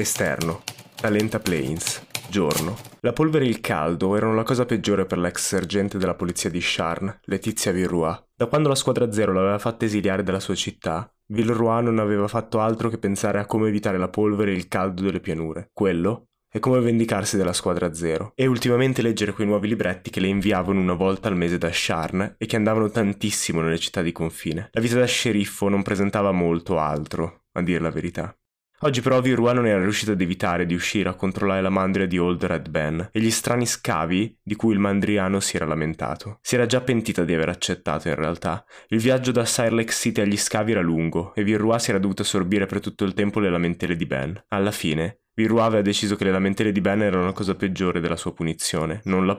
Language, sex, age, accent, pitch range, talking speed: Italian, male, 20-39, native, 90-110 Hz, 210 wpm